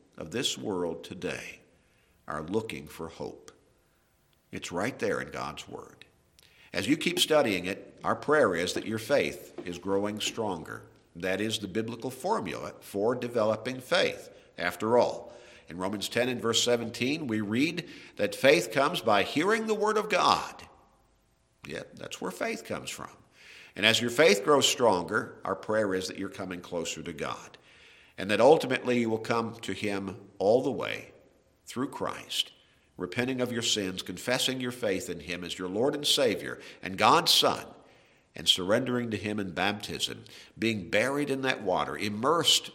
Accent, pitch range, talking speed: American, 95-120 Hz, 165 wpm